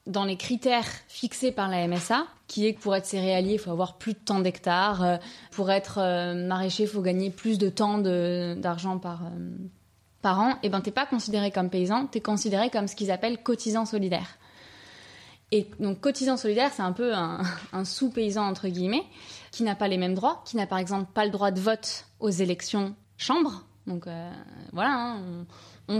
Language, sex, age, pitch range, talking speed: French, female, 20-39, 185-230 Hz, 200 wpm